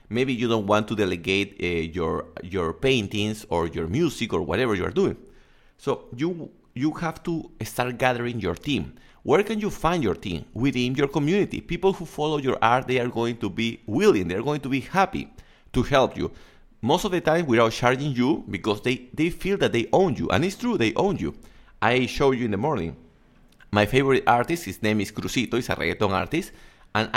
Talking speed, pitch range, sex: 205 wpm, 100-135 Hz, male